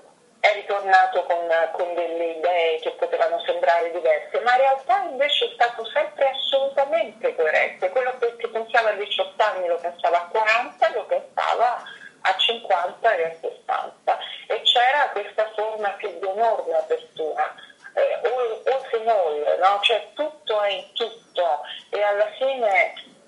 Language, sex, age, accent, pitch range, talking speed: Italian, female, 40-59, native, 185-265 Hz, 145 wpm